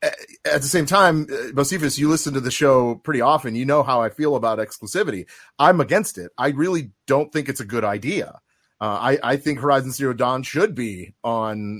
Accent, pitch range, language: American, 115-160 Hz, English